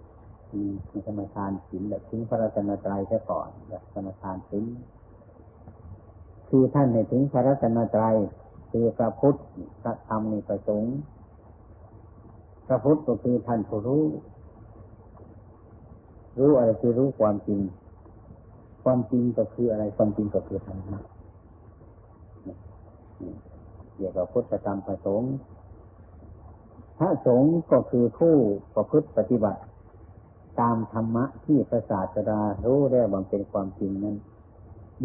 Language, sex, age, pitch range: Thai, male, 60-79, 95-115 Hz